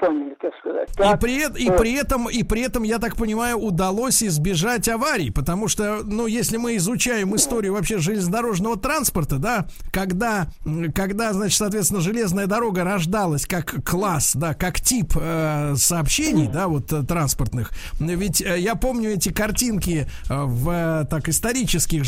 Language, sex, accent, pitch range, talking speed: Russian, male, native, 160-215 Hz, 135 wpm